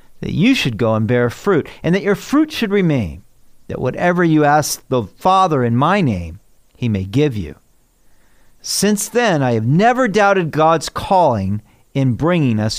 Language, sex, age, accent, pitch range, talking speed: English, male, 50-69, American, 125-200 Hz, 175 wpm